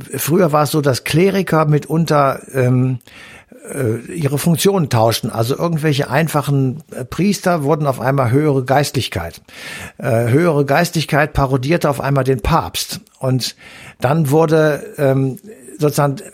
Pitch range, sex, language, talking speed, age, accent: 130-160 Hz, male, German, 120 wpm, 60-79, German